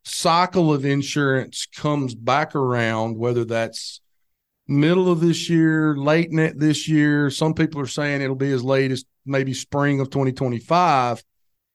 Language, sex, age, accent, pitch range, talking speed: English, male, 40-59, American, 125-155 Hz, 150 wpm